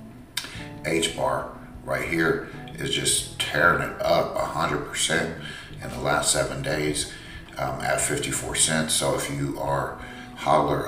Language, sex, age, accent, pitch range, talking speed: English, male, 50-69, American, 70-80 Hz, 145 wpm